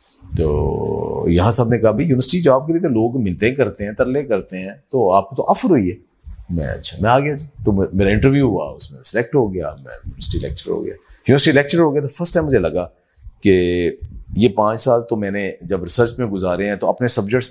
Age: 40-59